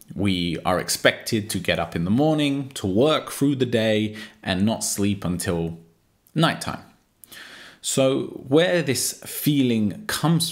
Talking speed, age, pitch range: 135 wpm, 20-39, 90-120 Hz